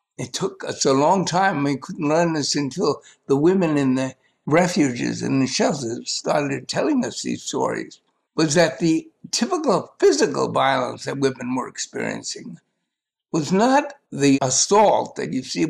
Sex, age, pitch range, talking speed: male, 60-79, 135-175 Hz, 155 wpm